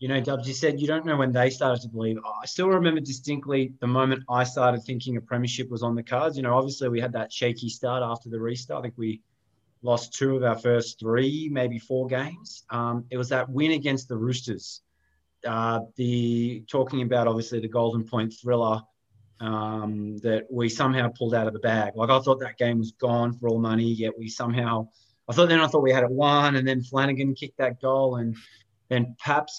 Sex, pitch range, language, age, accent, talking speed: male, 110-130 Hz, English, 20-39, Australian, 220 wpm